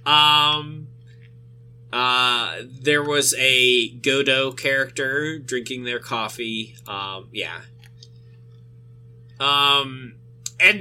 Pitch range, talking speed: 120-140 Hz, 80 wpm